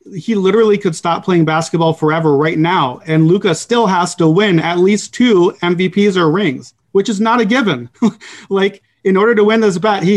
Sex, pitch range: male, 155-185 Hz